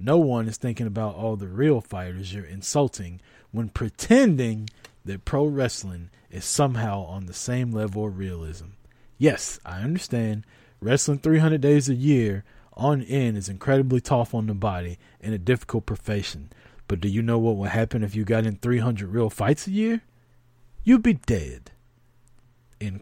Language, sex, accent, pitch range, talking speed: English, male, American, 105-125 Hz, 165 wpm